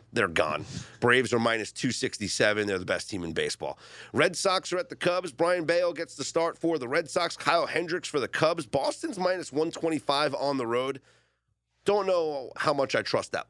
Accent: American